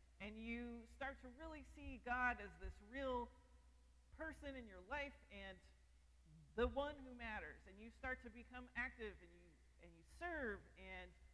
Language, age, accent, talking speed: English, 40-59, American, 160 wpm